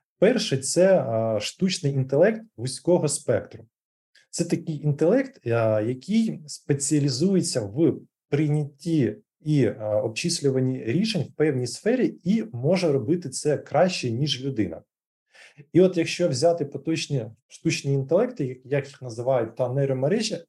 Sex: male